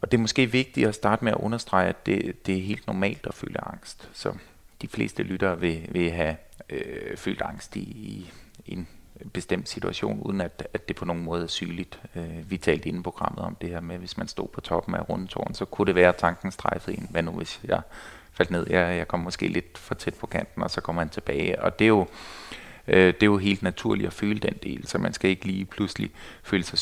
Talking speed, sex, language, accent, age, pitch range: 235 wpm, male, Danish, native, 30-49, 90-105 Hz